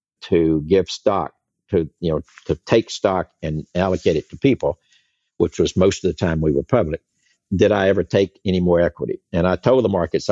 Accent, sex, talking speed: American, male, 205 wpm